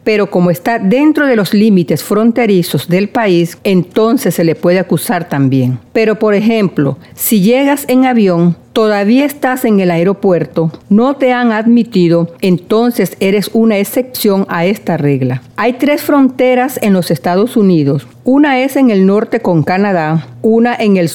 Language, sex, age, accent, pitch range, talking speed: Spanish, female, 50-69, American, 175-235 Hz, 160 wpm